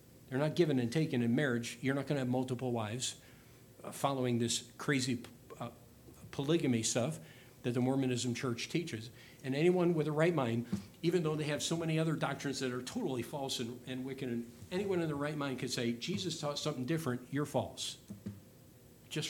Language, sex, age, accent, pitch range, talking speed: English, male, 50-69, American, 125-165 Hz, 195 wpm